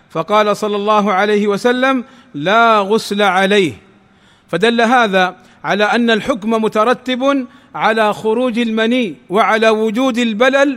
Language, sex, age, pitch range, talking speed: Arabic, male, 40-59, 205-235 Hz, 110 wpm